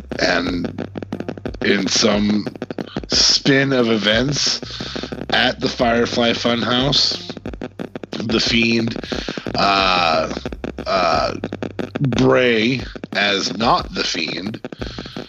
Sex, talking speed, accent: male, 75 wpm, American